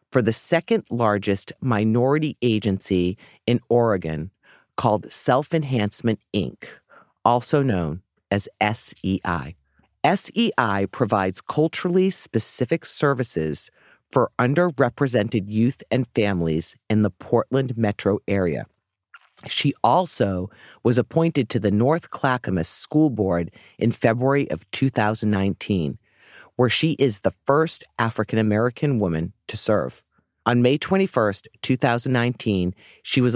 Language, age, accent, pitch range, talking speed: English, 40-59, American, 100-140 Hz, 105 wpm